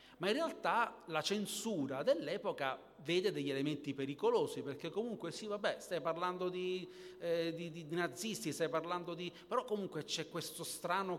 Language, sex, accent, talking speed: Italian, male, native, 155 wpm